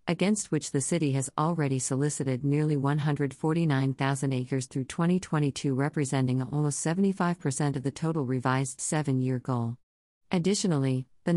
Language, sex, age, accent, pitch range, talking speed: English, female, 50-69, American, 130-155 Hz, 120 wpm